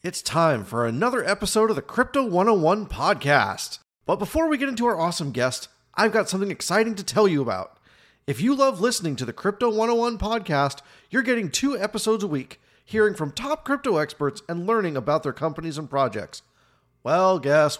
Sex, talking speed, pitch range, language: male, 185 wpm, 145-220 Hz, English